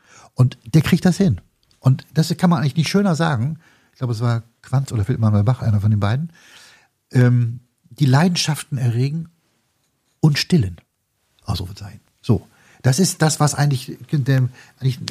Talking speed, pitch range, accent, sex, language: 165 wpm, 105-130 Hz, German, male, German